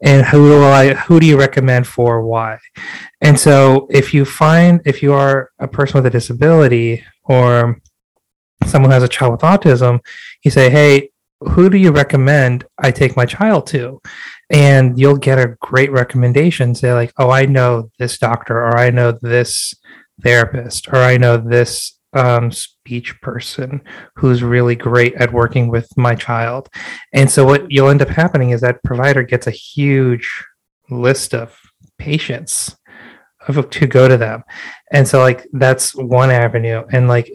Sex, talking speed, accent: male, 165 wpm, American